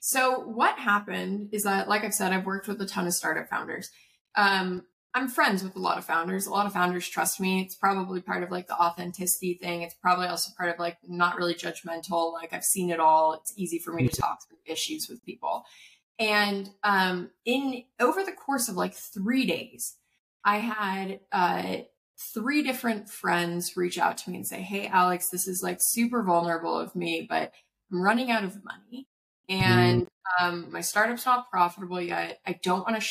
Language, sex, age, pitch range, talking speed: English, female, 20-39, 175-230 Hz, 200 wpm